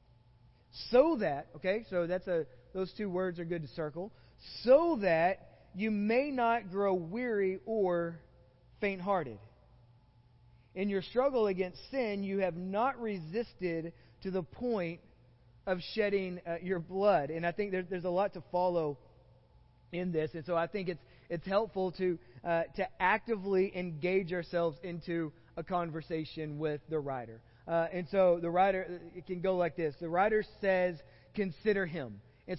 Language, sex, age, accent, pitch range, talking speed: English, male, 30-49, American, 165-205 Hz, 155 wpm